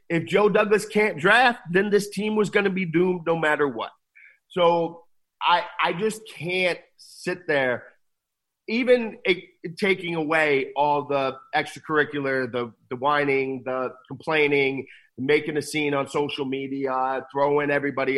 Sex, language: male, English